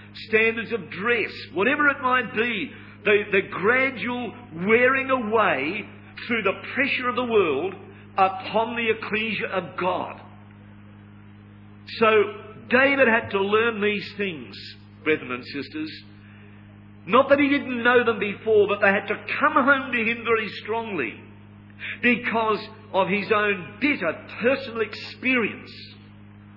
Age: 50-69